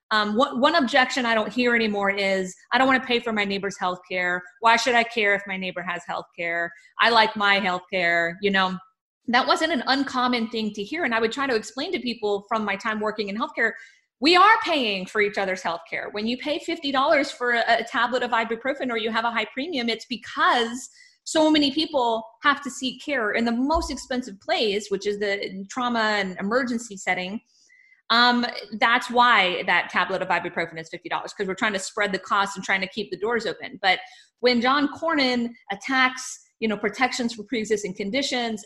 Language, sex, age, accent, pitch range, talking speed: English, female, 30-49, American, 195-255 Hz, 215 wpm